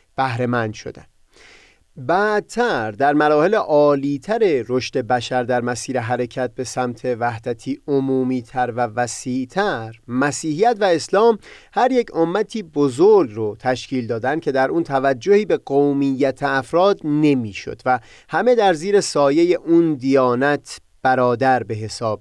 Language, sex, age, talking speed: Persian, male, 30-49, 120 wpm